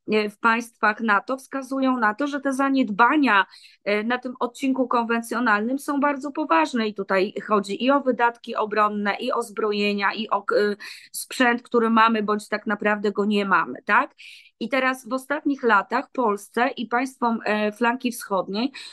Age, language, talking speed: 20-39, Polish, 150 wpm